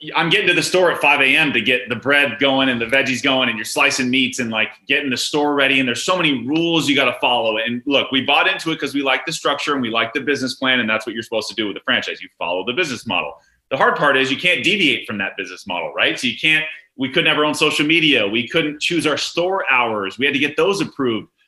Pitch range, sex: 130-160 Hz, male